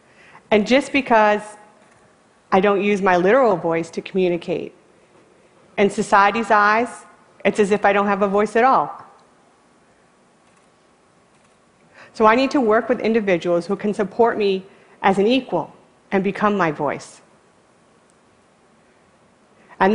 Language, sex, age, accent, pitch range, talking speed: Russian, female, 40-59, American, 180-220 Hz, 130 wpm